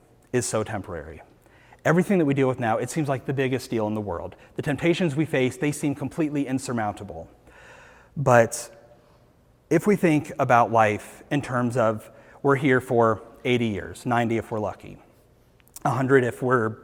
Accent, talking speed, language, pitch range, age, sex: American, 170 wpm, English, 115-145 Hz, 30-49, male